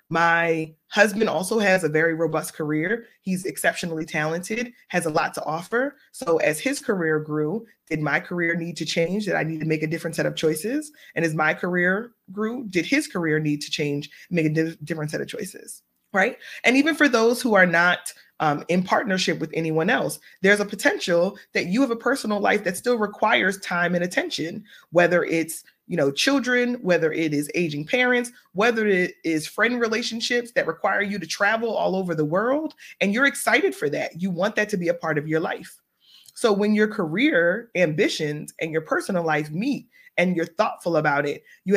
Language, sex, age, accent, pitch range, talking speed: English, female, 20-39, American, 160-215 Hz, 200 wpm